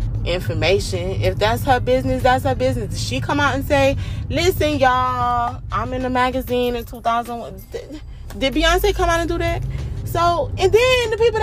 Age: 20-39